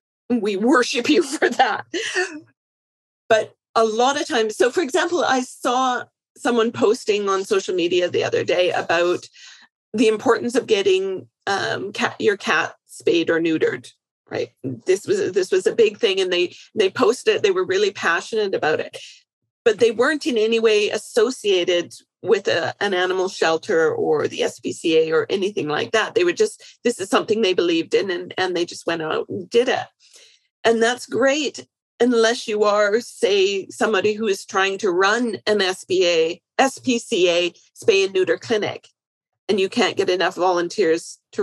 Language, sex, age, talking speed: English, female, 40-59, 170 wpm